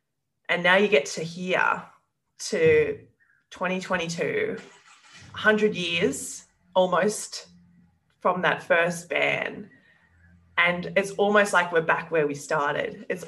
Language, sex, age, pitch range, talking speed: English, female, 20-39, 150-190 Hz, 115 wpm